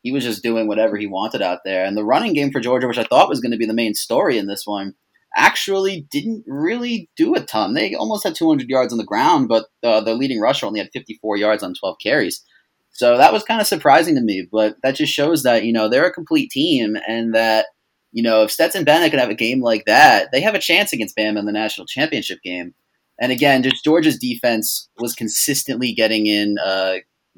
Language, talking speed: English, 235 wpm